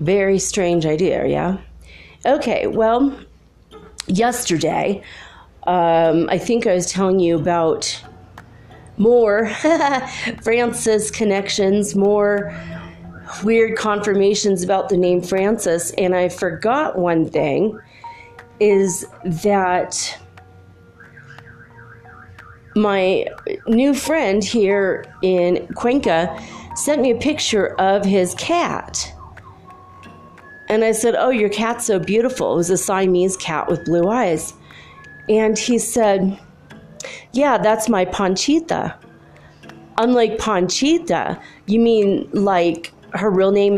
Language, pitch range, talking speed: English, 175-230 Hz, 105 wpm